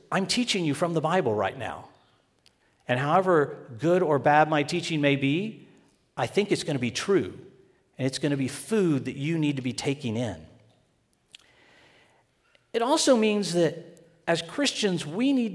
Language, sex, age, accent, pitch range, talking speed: English, male, 50-69, American, 130-175 Hz, 175 wpm